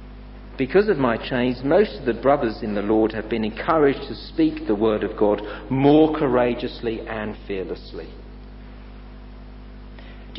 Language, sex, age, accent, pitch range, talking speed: English, male, 50-69, British, 125-175 Hz, 145 wpm